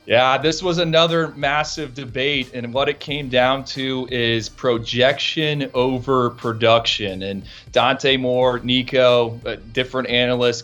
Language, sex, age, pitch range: English, male, 30-49, 115-130 Hz